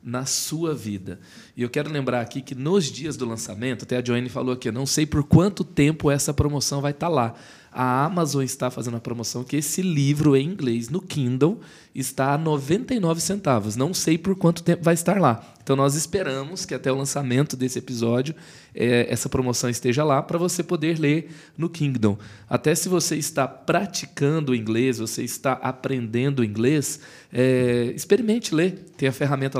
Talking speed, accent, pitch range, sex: 175 wpm, Brazilian, 125-160 Hz, male